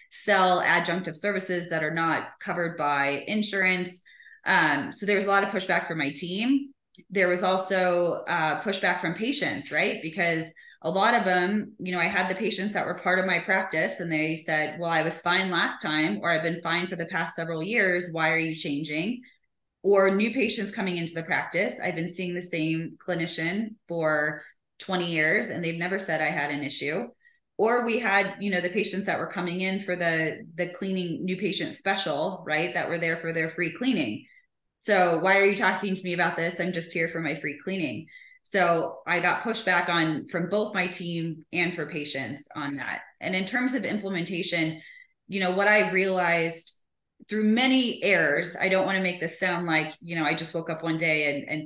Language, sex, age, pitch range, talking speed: English, female, 20-39, 160-195 Hz, 205 wpm